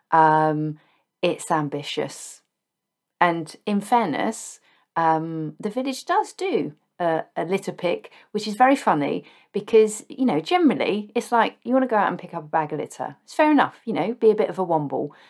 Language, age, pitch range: English, 40-59, 165-235 Hz